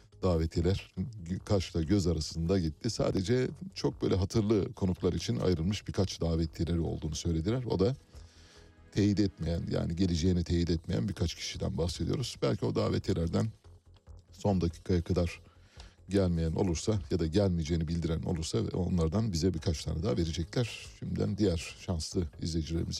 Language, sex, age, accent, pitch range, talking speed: Turkish, male, 60-79, native, 85-105 Hz, 130 wpm